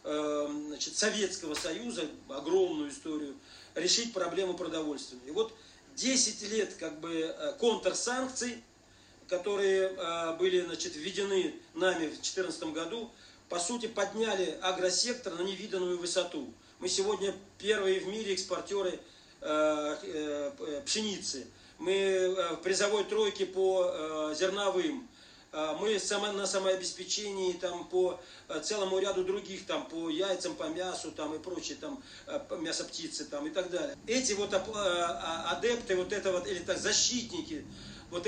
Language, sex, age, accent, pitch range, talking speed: Russian, male, 40-59, native, 175-225 Hz, 115 wpm